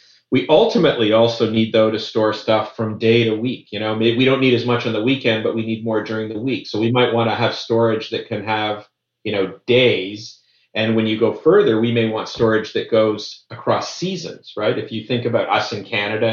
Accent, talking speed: American, 230 wpm